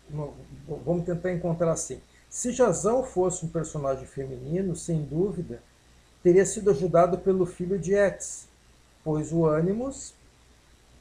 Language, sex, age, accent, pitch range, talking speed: Portuguese, male, 60-79, Brazilian, 135-175 Hz, 120 wpm